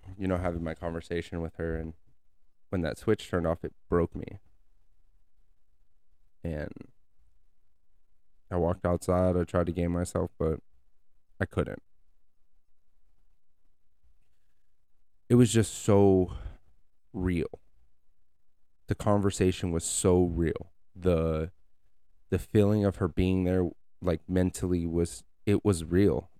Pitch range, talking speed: 80-90 Hz, 115 wpm